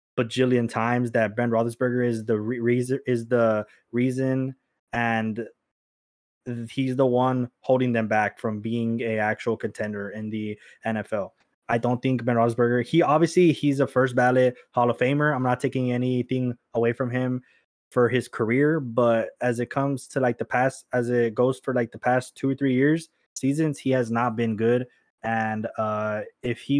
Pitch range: 115-130 Hz